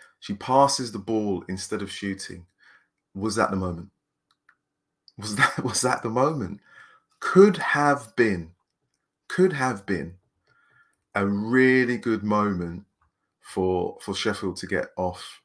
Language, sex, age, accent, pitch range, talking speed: English, male, 30-49, British, 95-115 Hz, 130 wpm